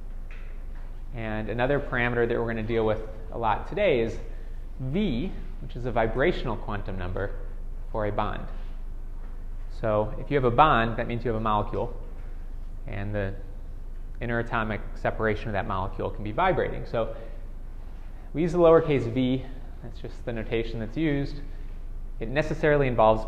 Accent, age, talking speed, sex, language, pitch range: American, 20-39, 155 wpm, male, English, 100-125 Hz